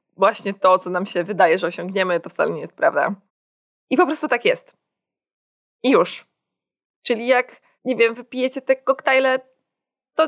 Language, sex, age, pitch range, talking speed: Polish, female, 20-39, 190-245 Hz, 165 wpm